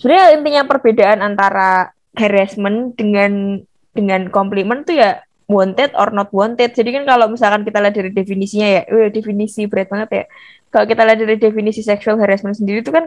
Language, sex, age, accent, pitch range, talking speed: Indonesian, female, 20-39, native, 200-235 Hz, 175 wpm